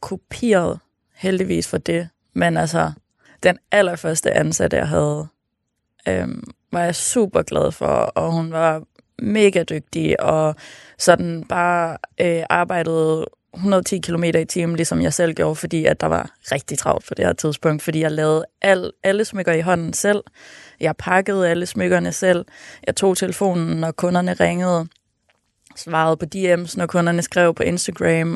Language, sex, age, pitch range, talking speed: Danish, female, 20-39, 155-180 Hz, 155 wpm